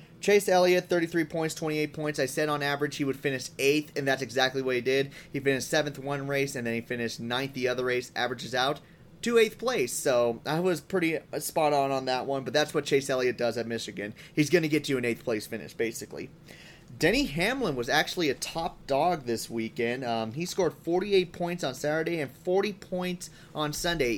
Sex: male